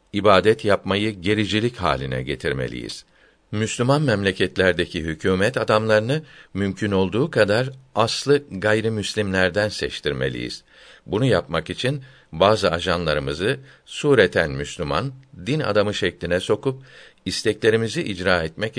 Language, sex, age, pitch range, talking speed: Turkish, male, 60-79, 90-110 Hz, 95 wpm